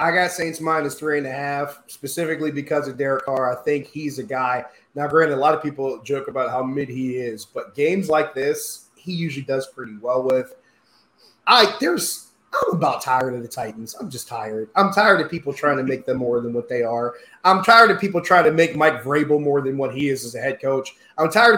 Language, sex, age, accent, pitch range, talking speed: English, male, 20-39, American, 135-165 Hz, 230 wpm